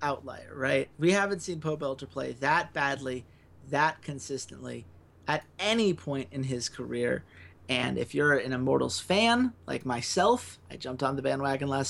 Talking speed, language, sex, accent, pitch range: 160 wpm, English, male, American, 125-185 Hz